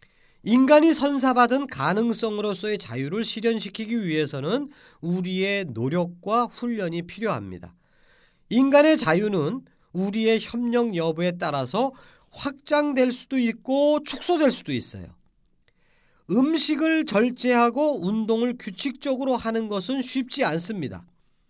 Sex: male